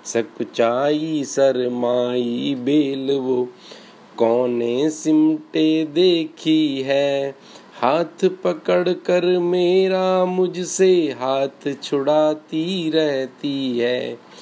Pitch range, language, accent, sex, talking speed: 130-175 Hz, Hindi, native, male, 70 wpm